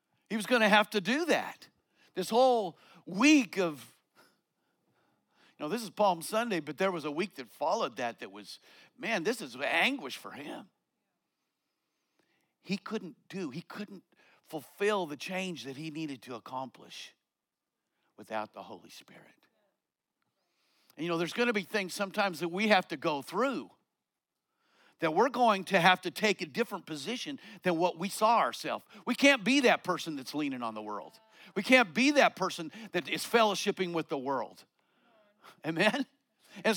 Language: English